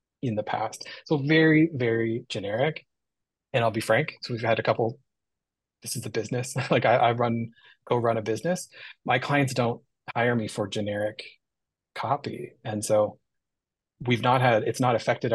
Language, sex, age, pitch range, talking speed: English, male, 30-49, 110-125 Hz, 170 wpm